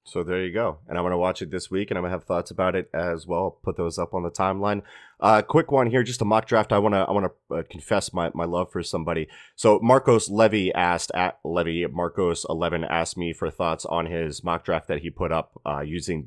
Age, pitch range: 30-49, 85-100 Hz